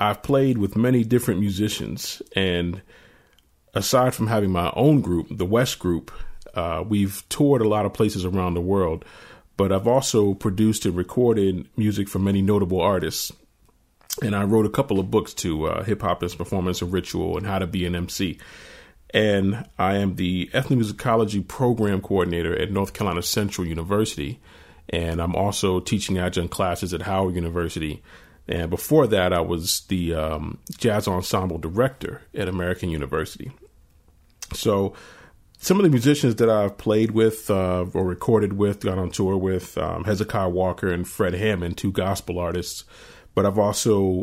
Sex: male